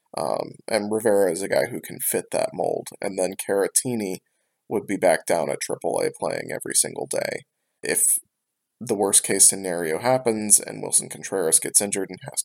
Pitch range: 95-125 Hz